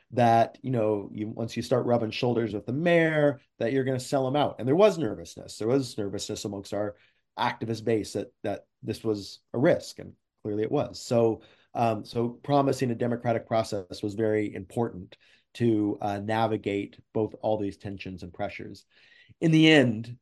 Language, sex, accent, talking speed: English, male, American, 185 wpm